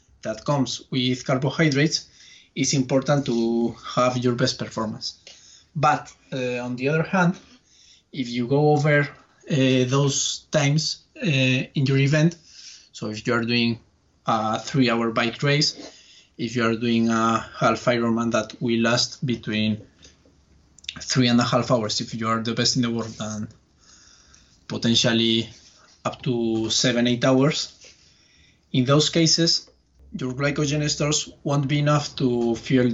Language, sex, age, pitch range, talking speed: English, male, 20-39, 115-140 Hz, 145 wpm